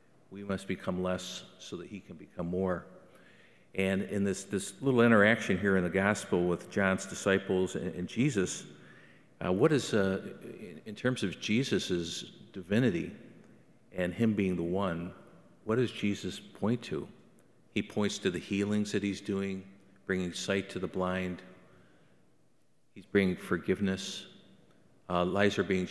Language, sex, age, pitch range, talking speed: English, male, 50-69, 90-100 Hz, 155 wpm